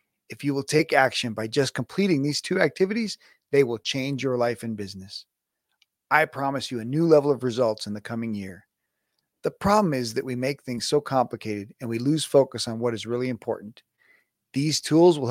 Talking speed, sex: 200 wpm, male